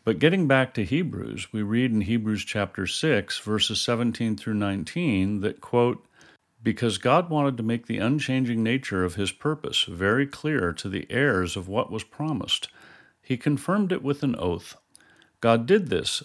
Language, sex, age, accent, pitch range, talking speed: English, male, 50-69, American, 95-130 Hz, 170 wpm